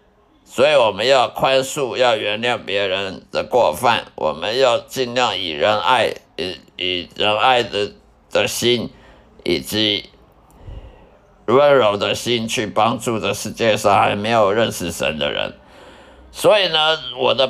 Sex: male